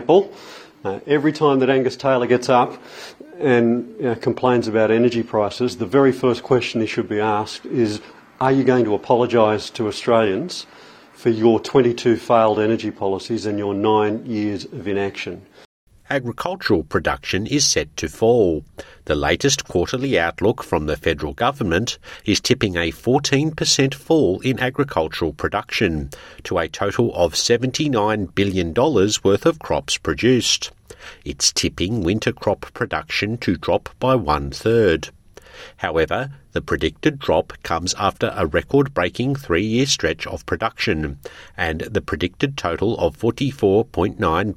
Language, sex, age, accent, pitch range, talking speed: English, male, 50-69, Australian, 100-130 Hz, 135 wpm